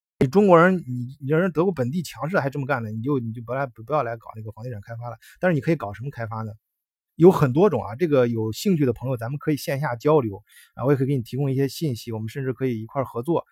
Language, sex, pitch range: Chinese, male, 115-155 Hz